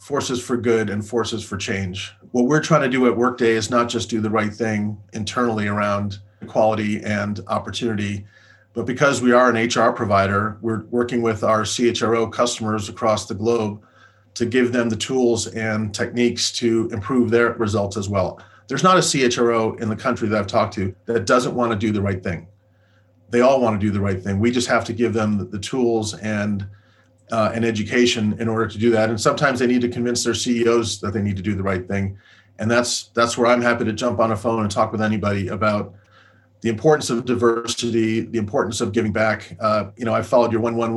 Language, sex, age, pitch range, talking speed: English, male, 30-49, 105-120 Hz, 215 wpm